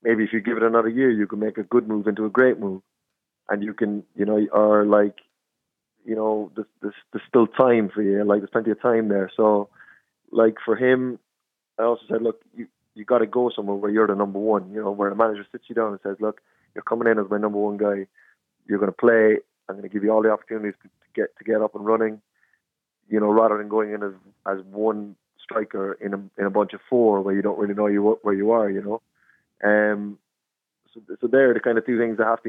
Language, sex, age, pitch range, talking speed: English, male, 20-39, 105-115 Hz, 250 wpm